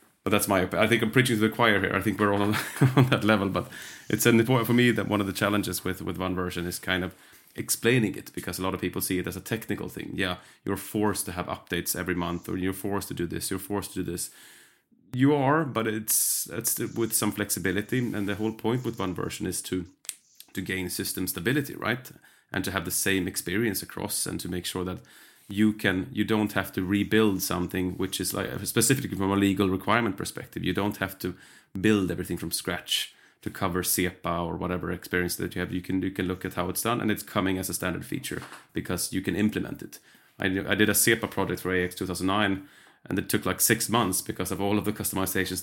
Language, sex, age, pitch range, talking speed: English, male, 30-49, 90-105 Hz, 235 wpm